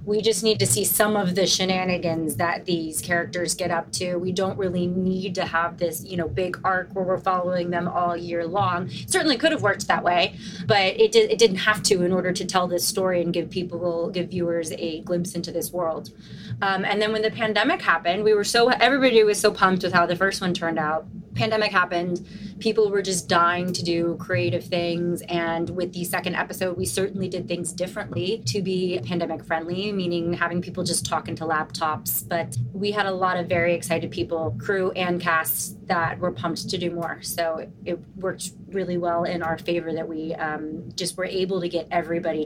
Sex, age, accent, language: female, 30-49, American, English